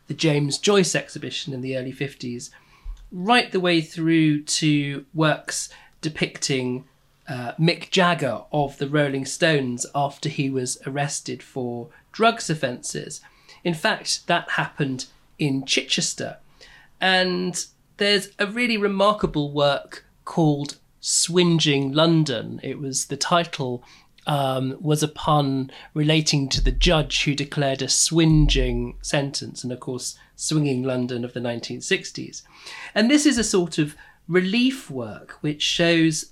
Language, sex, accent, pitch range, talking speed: English, male, British, 135-175 Hz, 130 wpm